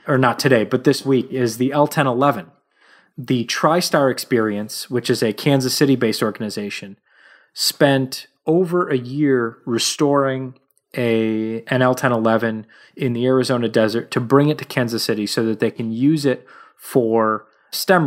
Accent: American